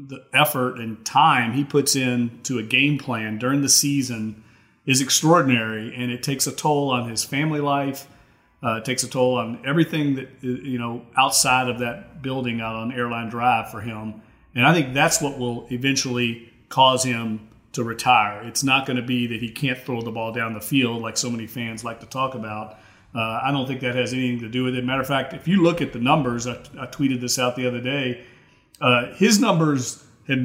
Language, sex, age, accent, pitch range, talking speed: English, male, 40-59, American, 120-140 Hz, 215 wpm